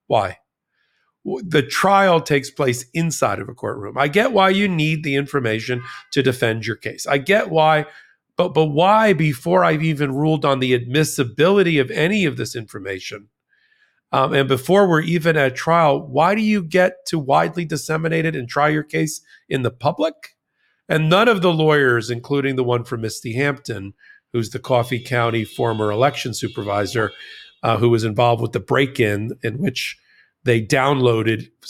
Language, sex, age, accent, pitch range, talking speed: English, male, 50-69, American, 120-155 Hz, 170 wpm